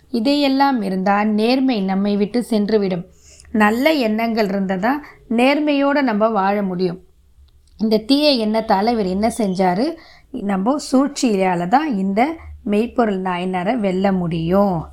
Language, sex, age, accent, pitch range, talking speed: Tamil, female, 20-39, native, 190-235 Hz, 115 wpm